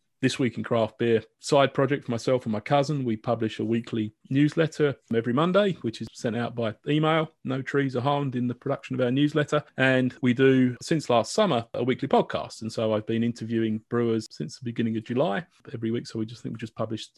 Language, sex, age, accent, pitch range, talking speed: English, male, 30-49, British, 115-145 Hz, 225 wpm